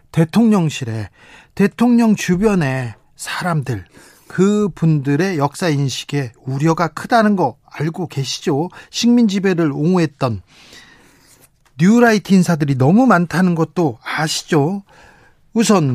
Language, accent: Korean, native